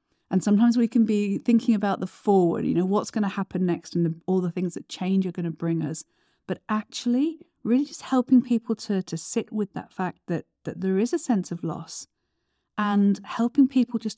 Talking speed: 220 wpm